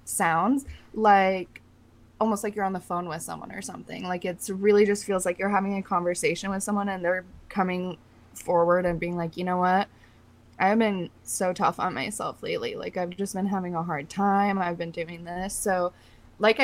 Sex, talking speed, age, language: female, 200 wpm, 20-39, English